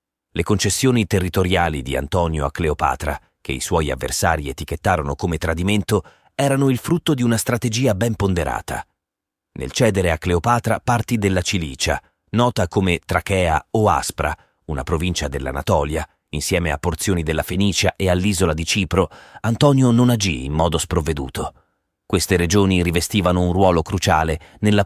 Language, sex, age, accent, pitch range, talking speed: Italian, male, 30-49, native, 85-105 Hz, 140 wpm